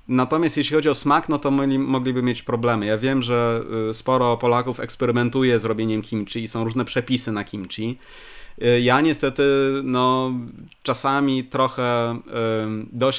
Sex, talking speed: male, 145 wpm